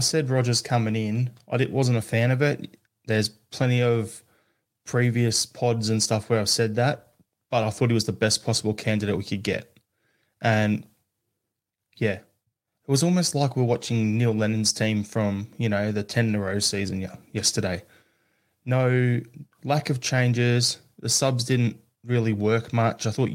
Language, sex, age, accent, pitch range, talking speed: English, male, 20-39, Australian, 110-130 Hz, 165 wpm